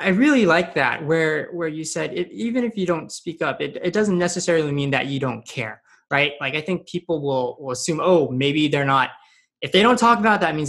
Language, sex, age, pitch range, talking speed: English, male, 20-39, 140-185 Hz, 245 wpm